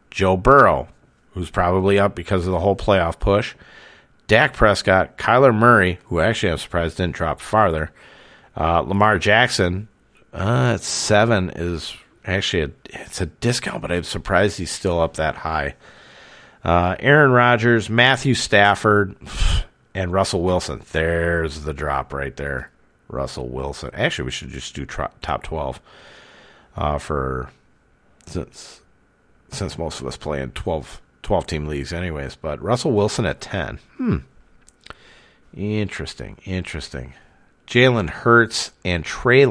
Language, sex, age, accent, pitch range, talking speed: English, male, 40-59, American, 75-105 Hz, 135 wpm